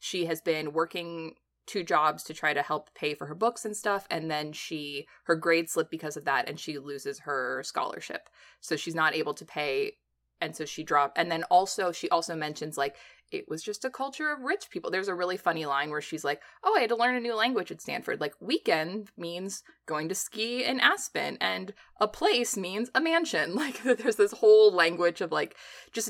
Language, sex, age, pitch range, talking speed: English, female, 20-39, 155-200 Hz, 220 wpm